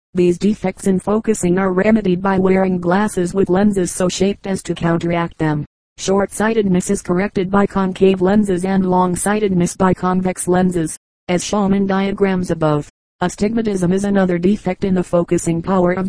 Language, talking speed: English, 165 wpm